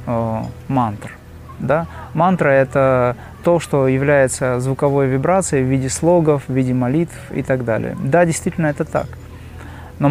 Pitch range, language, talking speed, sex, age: 125-155 Hz, Russian, 125 wpm, male, 30-49